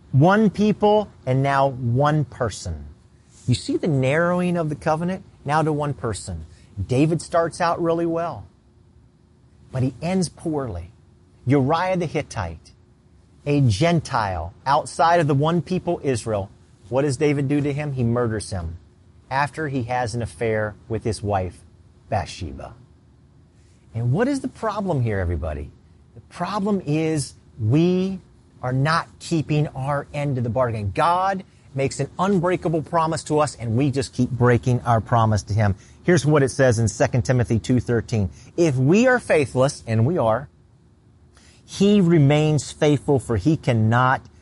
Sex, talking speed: male, 150 wpm